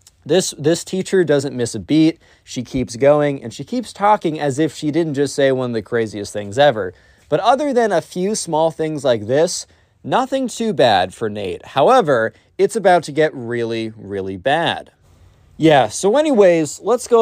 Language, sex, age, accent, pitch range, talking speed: English, male, 20-39, American, 115-170 Hz, 185 wpm